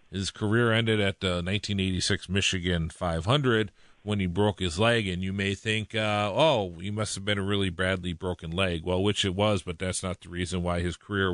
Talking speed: 210 wpm